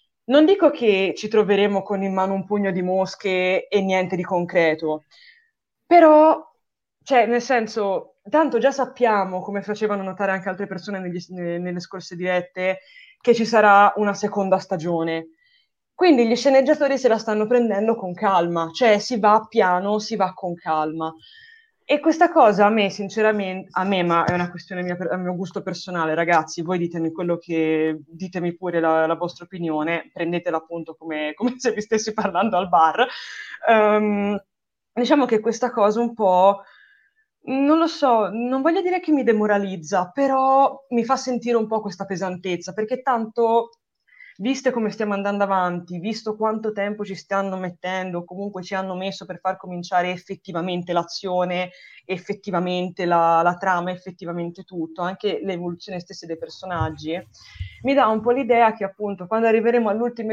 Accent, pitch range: native, 180-230 Hz